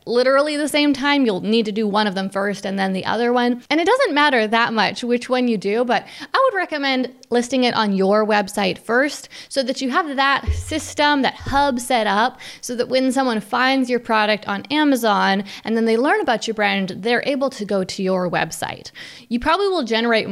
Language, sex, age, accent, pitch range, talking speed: English, female, 20-39, American, 205-265 Hz, 220 wpm